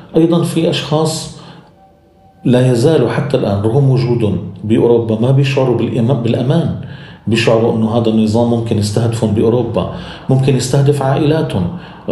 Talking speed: 115 wpm